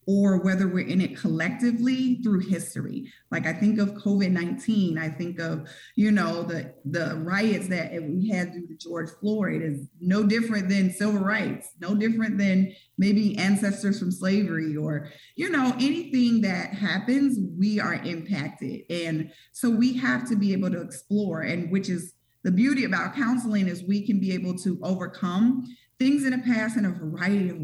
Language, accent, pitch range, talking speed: English, American, 170-230 Hz, 175 wpm